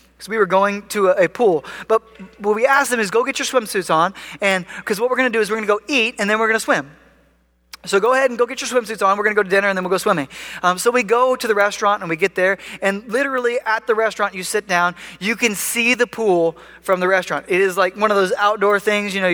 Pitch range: 195-265 Hz